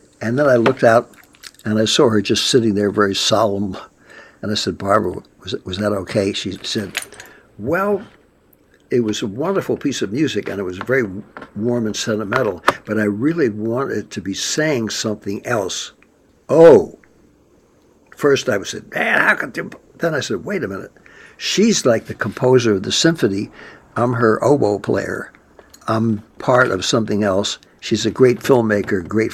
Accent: American